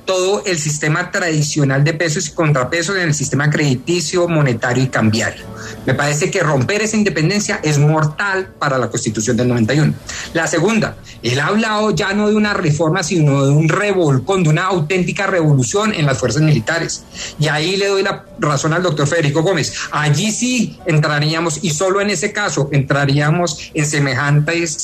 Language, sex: Spanish, male